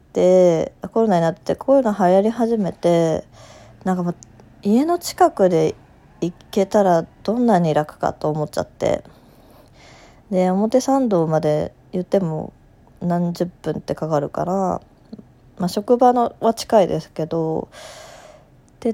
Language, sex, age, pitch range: Japanese, female, 20-39, 170-230 Hz